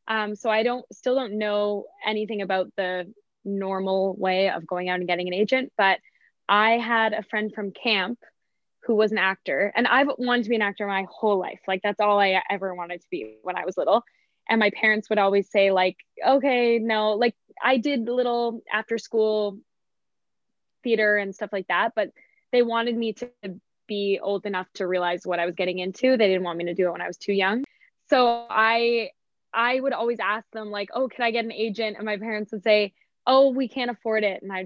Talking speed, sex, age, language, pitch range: 215 wpm, female, 10-29, English, 200-240 Hz